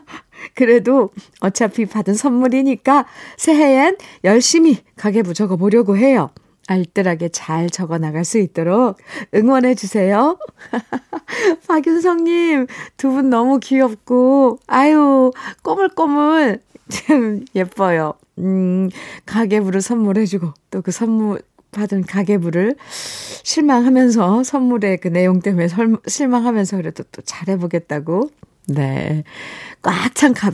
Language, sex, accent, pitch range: Korean, female, native, 180-255 Hz